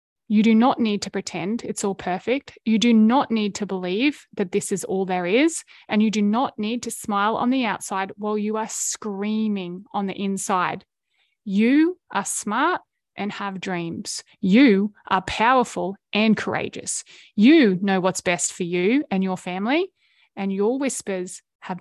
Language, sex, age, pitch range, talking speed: English, female, 20-39, 195-240 Hz, 170 wpm